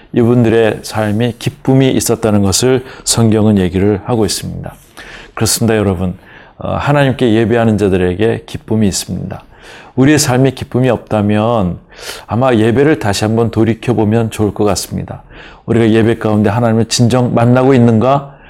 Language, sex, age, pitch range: Korean, male, 40-59, 105-130 Hz